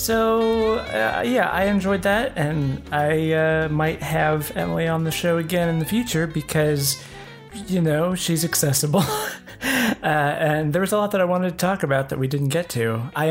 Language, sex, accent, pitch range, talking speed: English, male, American, 125-175 Hz, 190 wpm